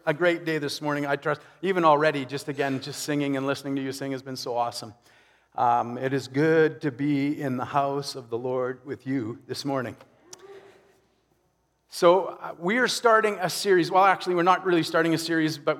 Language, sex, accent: English, male, American